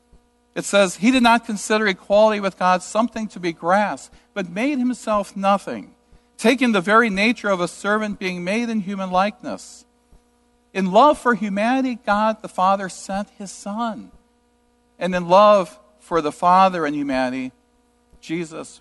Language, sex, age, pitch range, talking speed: English, male, 50-69, 175-240 Hz, 155 wpm